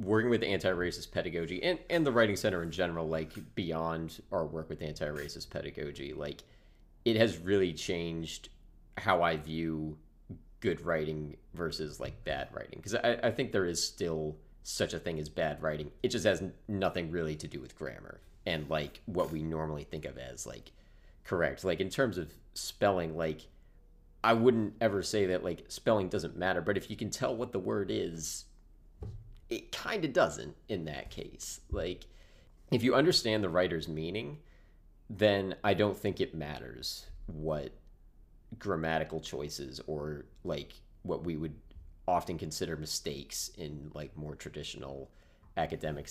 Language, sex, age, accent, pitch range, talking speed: English, male, 30-49, American, 80-105 Hz, 165 wpm